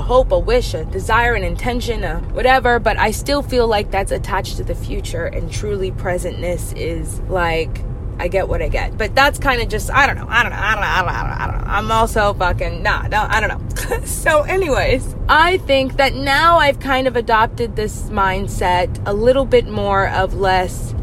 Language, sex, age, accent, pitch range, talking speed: English, female, 20-39, American, 195-320 Hz, 205 wpm